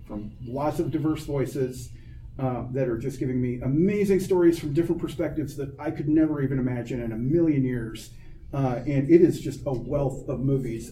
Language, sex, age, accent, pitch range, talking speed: English, male, 30-49, American, 135-195 Hz, 190 wpm